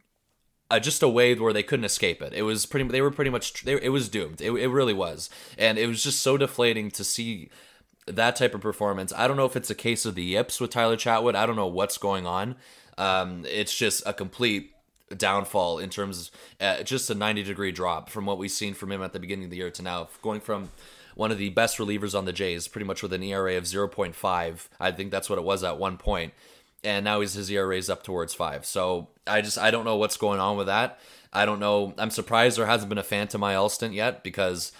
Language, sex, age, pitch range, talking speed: English, male, 20-39, 95-110 Hz, 245 wpm